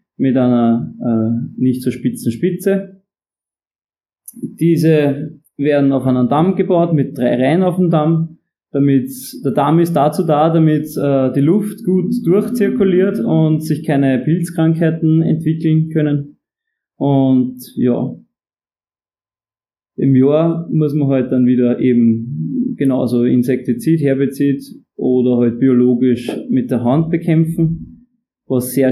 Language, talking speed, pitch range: German, 120 wpm, 130-165 Hz